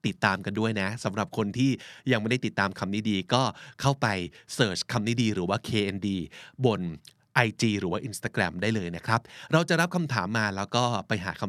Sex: male